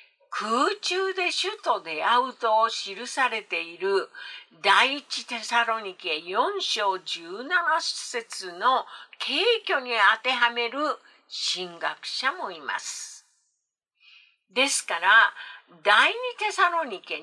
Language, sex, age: Japanese, female, 50-69